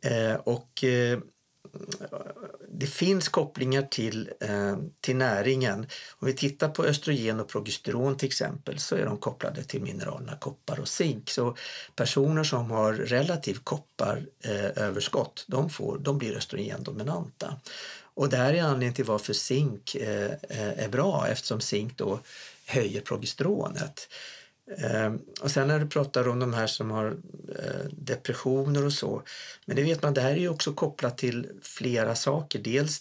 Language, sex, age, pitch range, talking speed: Swedish, male, 50-69, 115-150 Hz, 150 wpm